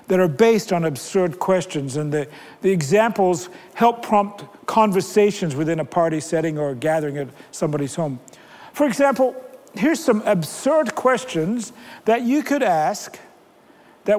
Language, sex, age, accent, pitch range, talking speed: English, male, 60-79, American, 175-255 Hz, 140 wpm